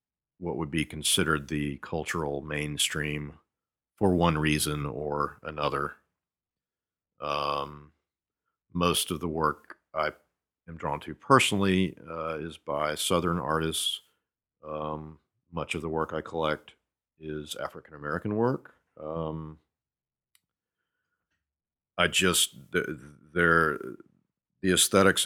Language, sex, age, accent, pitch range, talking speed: English, male, 50-69, American, 75-90 Hz, 105 wpm